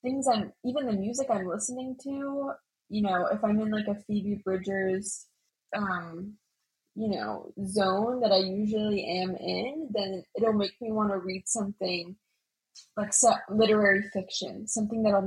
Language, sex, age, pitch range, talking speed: English, female, 10-29, 195-240 Hz, 155 wpm